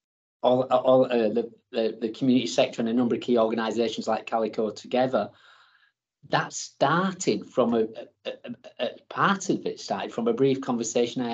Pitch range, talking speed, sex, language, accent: 115-140 Hz, 175 wpm, male, English, British